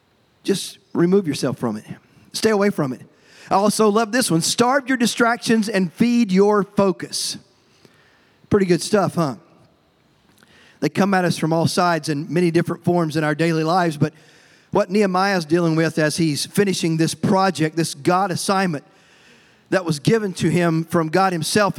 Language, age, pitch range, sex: English, 40-59, 175-220 Hz, male